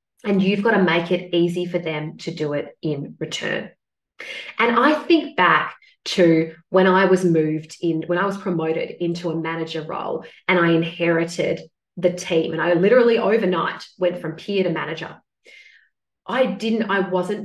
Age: 30-49